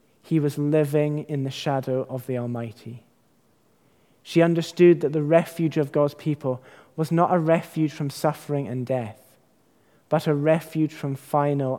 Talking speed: 155 wpm